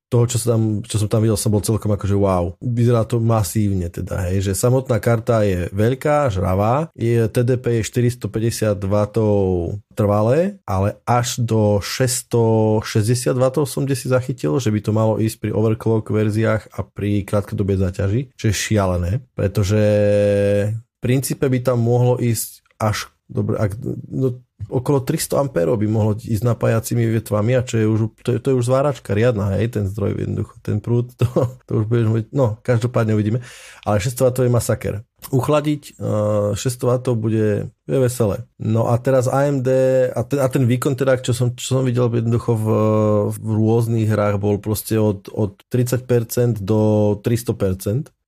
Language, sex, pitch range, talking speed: Slovak, male, 105-125 Hz, 170 wpm